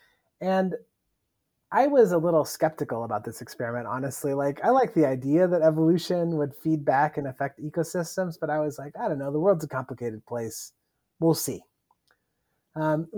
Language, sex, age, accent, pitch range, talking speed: English, male, 30-49, American, 140-180 Hz, 175 wpm